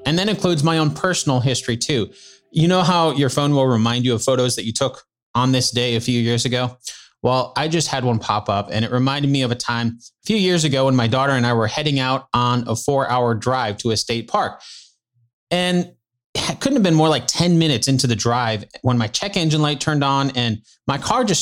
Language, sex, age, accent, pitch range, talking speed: English, male, 30-49, American, 125-170 Hz, 240 wpm